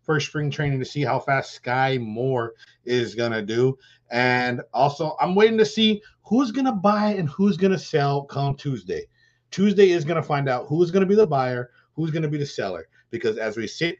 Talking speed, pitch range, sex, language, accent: 225 wpm, 120-150 Hz, male, English, American